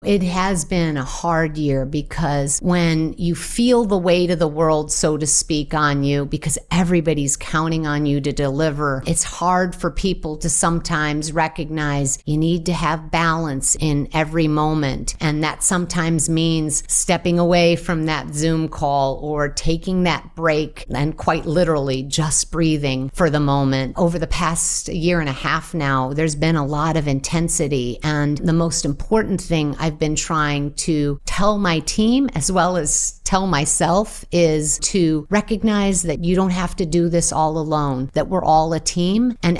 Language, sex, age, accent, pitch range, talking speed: English, female, 50-69, American, 150-180 Hz, 170 wpm